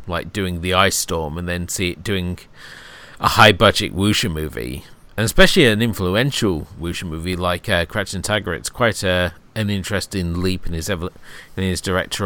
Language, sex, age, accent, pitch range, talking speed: English, male, 40-59, British, 85-105 Hz, 160 wpm